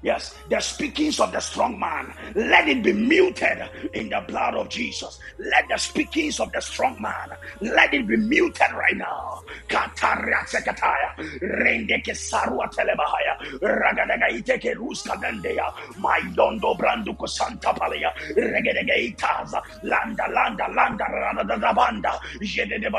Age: 50-69